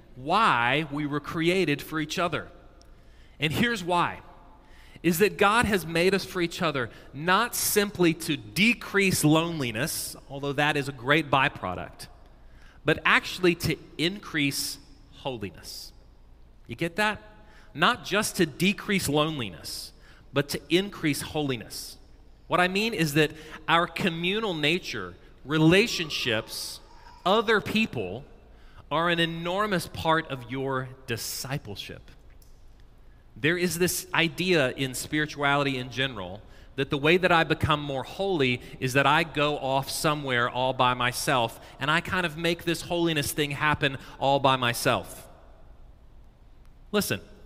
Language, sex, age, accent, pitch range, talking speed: English, male, 30-49, American, 130-170 Hz, 130 wpm